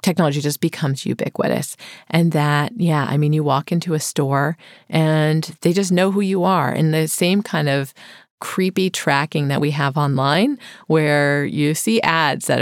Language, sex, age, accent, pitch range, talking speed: English, female, 30-49, American, 145-180 Hz, 175 wpm